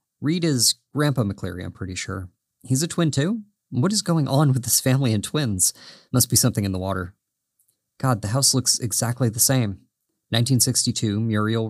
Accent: American